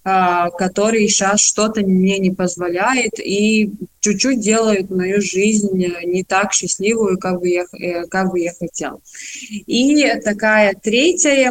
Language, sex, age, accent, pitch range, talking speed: Russian, female, 20-39, native, 185-220 Hz, 125 wpm